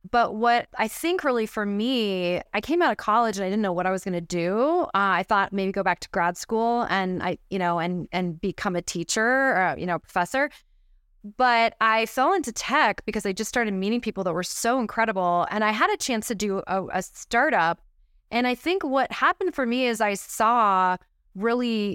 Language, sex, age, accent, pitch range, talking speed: English, female, 20-39, American, 190-240 Hz, 220 wpm